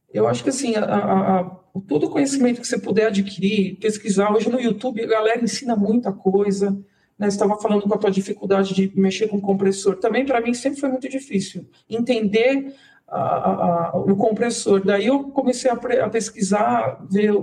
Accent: Brazilian